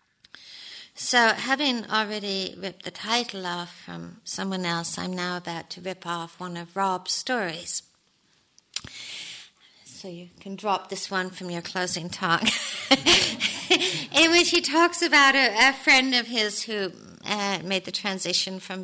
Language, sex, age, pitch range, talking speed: English, female, 50-69, 170-215 Hz, 145 wpm